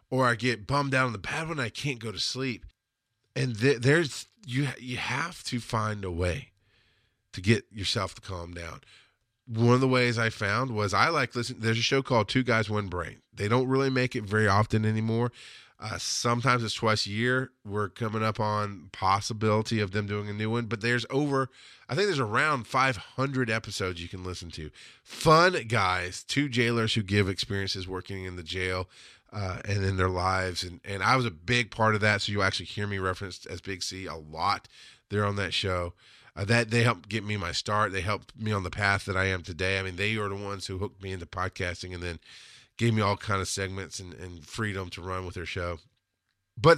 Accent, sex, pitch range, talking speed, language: American, male, 95-120 Hz, 220 wpm, English